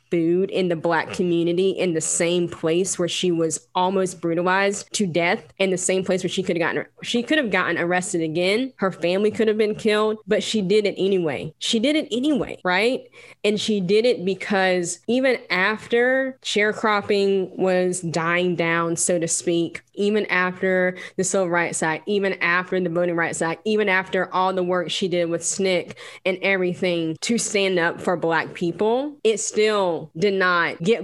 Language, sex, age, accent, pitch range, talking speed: English, female, 10-29, American, 170-205 Hz, 185 wpm